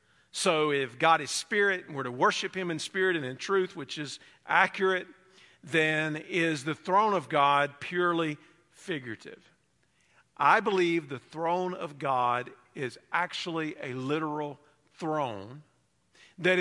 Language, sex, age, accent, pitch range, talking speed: English, male, 50-69, American, 150-185 Hz, 135 wpm